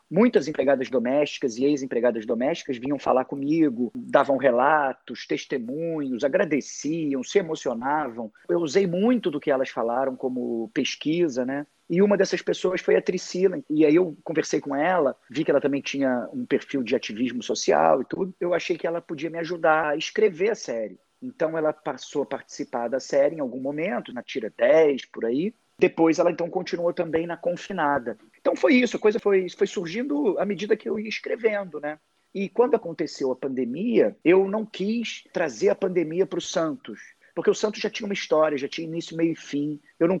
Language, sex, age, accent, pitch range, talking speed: Portuguese, male, 40-59, Brazilian, 150-200 Hz, 190 wpm